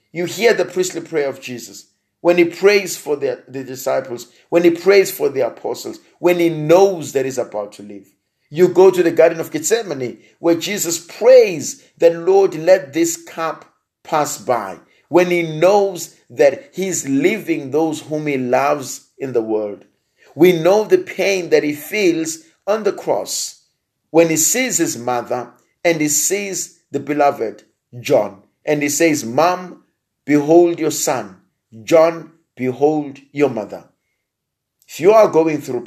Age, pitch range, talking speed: 50-69, 125-175 Hz, 160 wpm